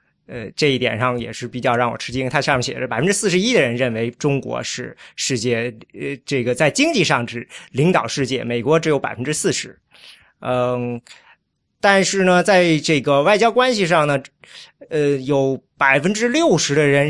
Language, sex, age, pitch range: Chinese, male, 20-39, 125-170 Hz